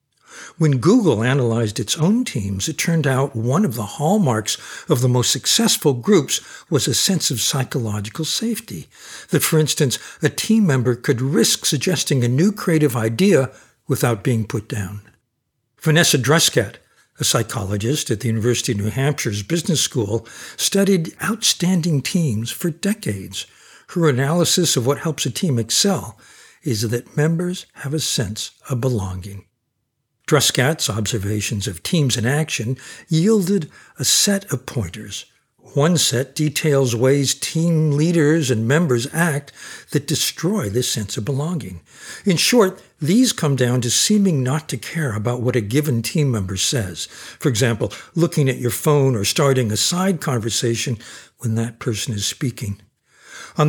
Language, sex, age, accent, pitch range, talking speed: English, male, 60-79, American, 115-165 Hz, 150 wpm